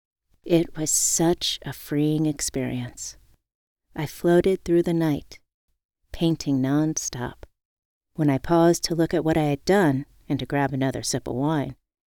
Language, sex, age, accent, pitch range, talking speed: English, female, 40-59, American, 130-170 Hz, 150 wpm